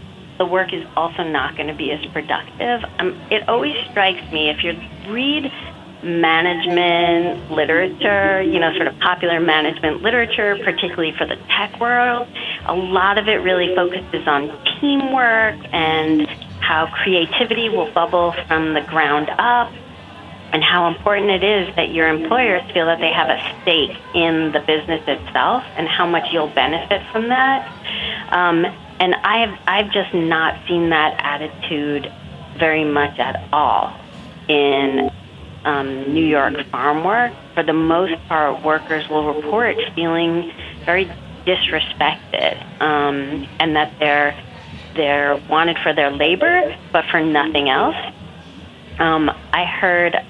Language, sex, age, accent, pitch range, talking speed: English, female, 40-59, American, 150-185 Hz, 140 wpm